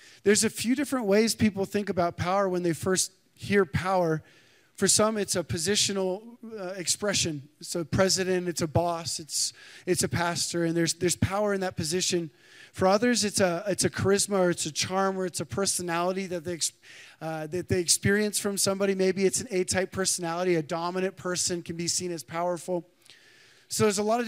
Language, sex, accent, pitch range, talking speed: English, male, American, 175-205 Hz, 195 wpm